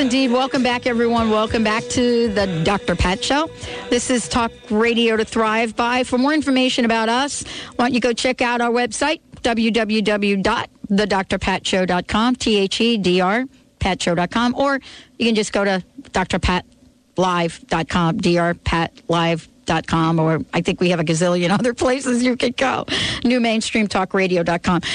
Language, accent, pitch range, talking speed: English, American, 185-240 Hz, 130 wpm